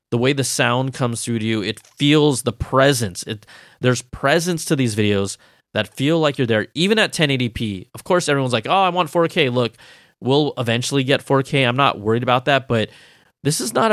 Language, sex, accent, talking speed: English, male, American, 205 wpm